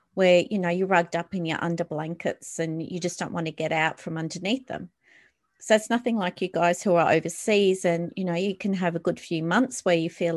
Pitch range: 170-205 Hz